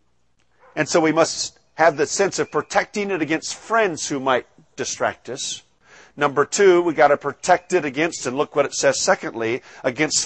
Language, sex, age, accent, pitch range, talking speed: English, male, 50-69, American, 130-175 Hz, 180 wpm